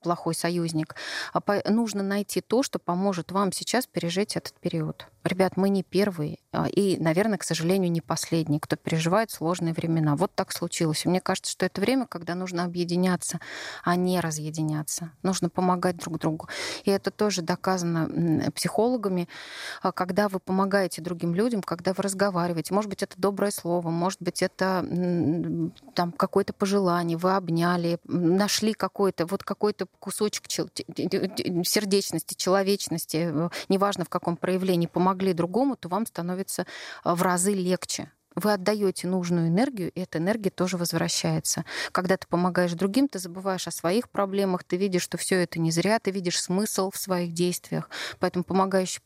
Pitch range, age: 170-195 Hz, 30-49